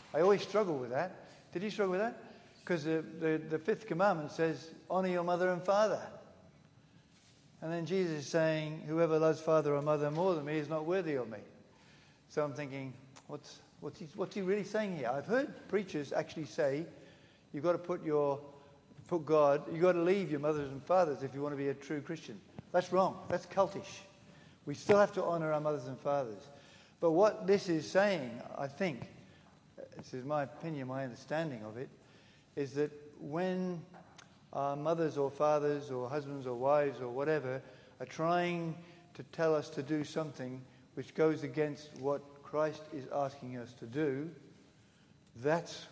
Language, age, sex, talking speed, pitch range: English, 60-79, male, 180 wpm, 140-175 Hz